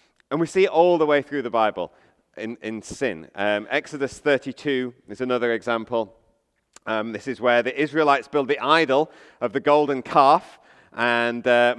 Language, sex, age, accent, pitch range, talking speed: English, male, 30-49, British, 130-170 Hz, 175 wpm